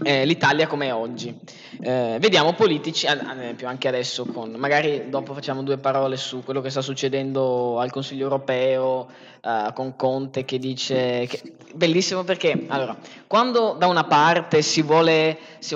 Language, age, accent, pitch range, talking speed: Italian, 20-39, native, 135-170 Hz, 150 wpm